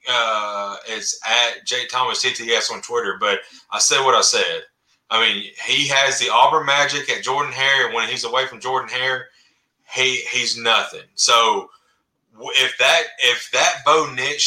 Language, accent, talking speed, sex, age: English, American, 170 wpm, male, 30-49